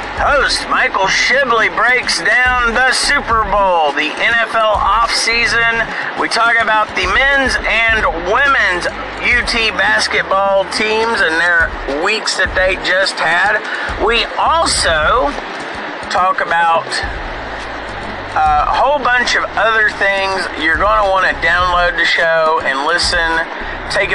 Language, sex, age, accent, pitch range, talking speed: English, male, 40-59, American, 165-235 Hz, 120 wpm